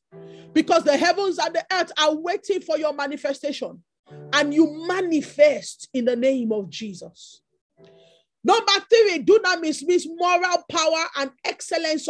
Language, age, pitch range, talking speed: English, 40-59, 300-420 Hz, 145 wpm